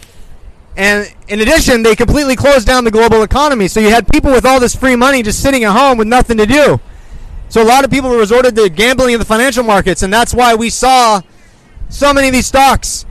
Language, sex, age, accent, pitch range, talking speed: English, male, 30-49, American, 195-250 Hz, 225 wpm